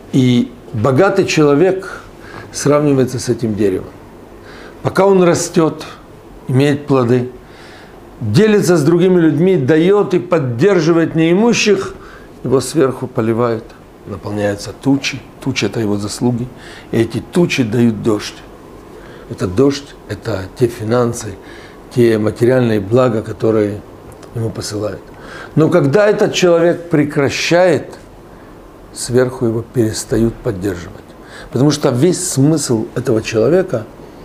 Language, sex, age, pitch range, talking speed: Russian, male, 60-79, 115-160 Hz, 110 wpm